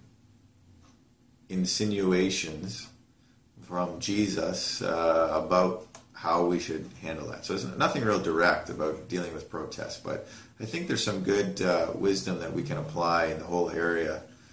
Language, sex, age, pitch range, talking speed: English, male, 40-59, 90-115 Hz, 145 wpm